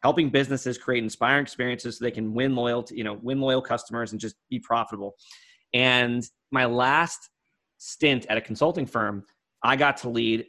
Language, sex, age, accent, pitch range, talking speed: English, male, 30-49, American, 115-155 Hz, 160 wpm